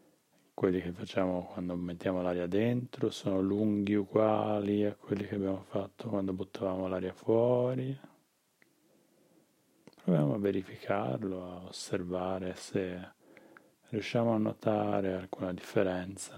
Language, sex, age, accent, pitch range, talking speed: Italian, male, 30-49, native, 95-110 Hz, 110 wpm